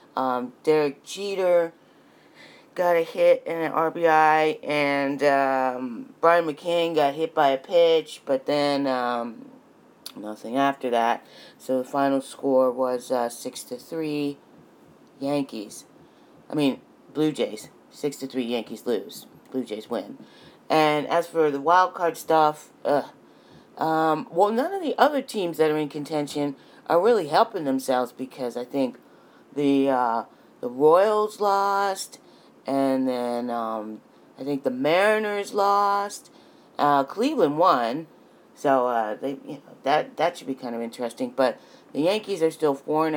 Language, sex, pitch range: English, female, 130-160 Hz